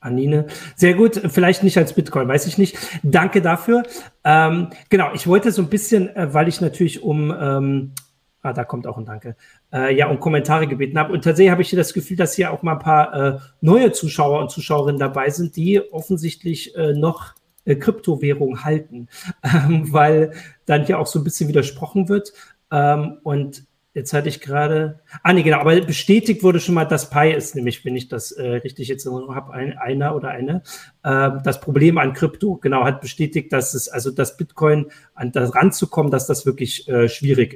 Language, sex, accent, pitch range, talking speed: German, male, German, 135-175 Hz, 200 wpm